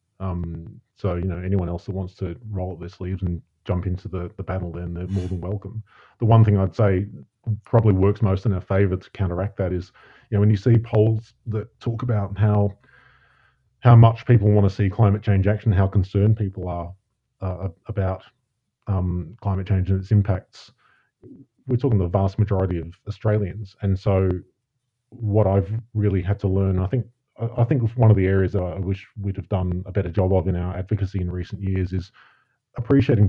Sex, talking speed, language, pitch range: male, 200 wpm, English, 95-110 Hz